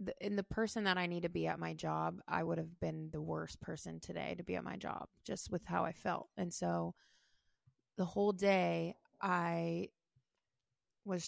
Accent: American